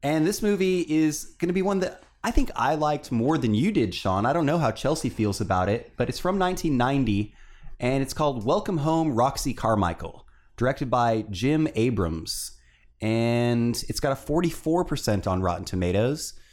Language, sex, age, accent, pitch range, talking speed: English, male, 30-49, American, 105-150 Hz, 180 wpm